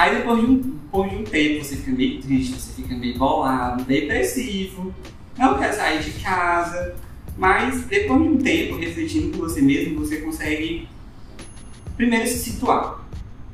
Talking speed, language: 165 wpm, Portuguese